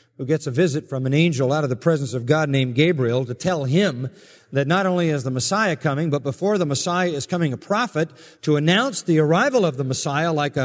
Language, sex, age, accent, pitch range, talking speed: English, male, 50-69, American, 140-185 Hz, 225 wpm